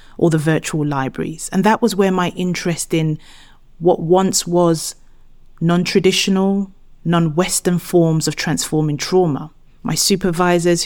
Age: 30-49